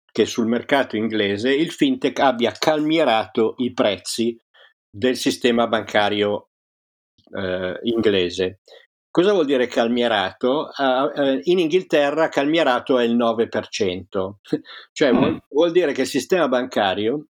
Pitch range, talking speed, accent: 100-135 Hz, 120 wpm, native